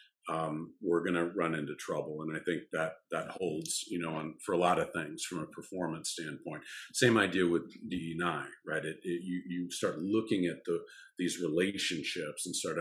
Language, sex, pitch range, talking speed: English, male, 80-90 Hz, 200 wpm